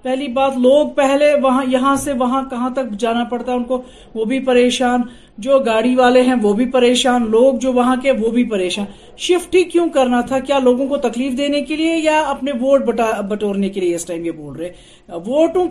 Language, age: Urdu, 50-69